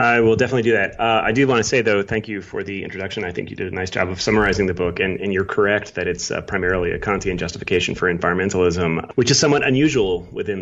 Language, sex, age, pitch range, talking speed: English, male, 30-49, 85-105 Hz, 260 wpm